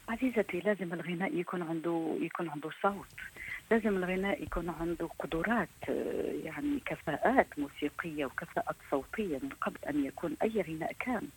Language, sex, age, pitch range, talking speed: Arabic, female, 40-59, 165-225 Hz, 130 wpm